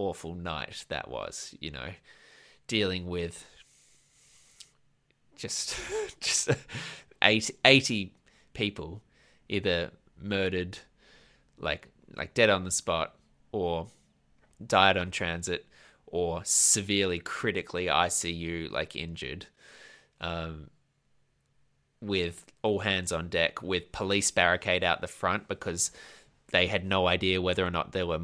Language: English